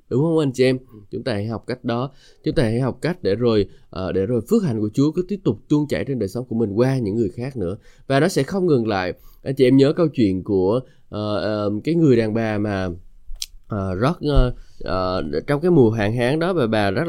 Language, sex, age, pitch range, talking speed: Vietnamese, male, 20-39, 105-140 Hz, 255 wpm